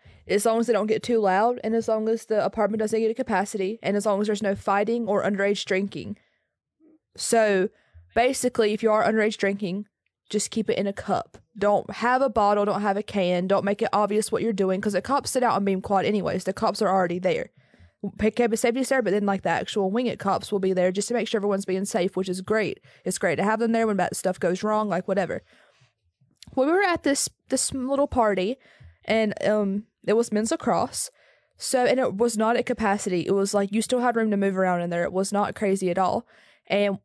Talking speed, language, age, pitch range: 240 wpm, English, 20-39, 190-230 Hz